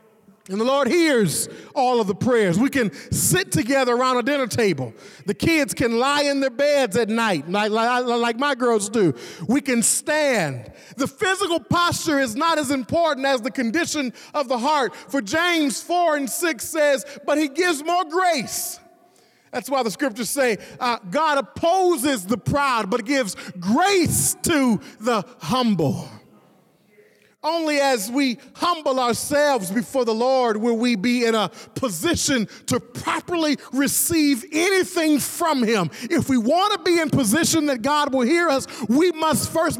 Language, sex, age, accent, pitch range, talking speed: English, male, 40-59, American, 240-310 Hz, 160 wpm